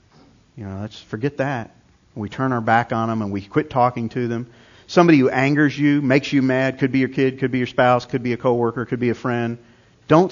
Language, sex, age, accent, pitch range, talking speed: English, male, 40-59, American, 105-140 Hz, 240 wpm